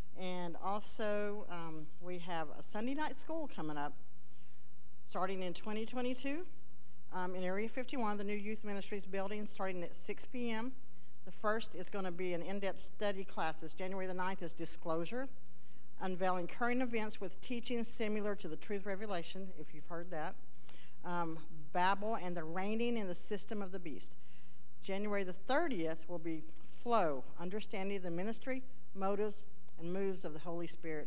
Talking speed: 160 wpm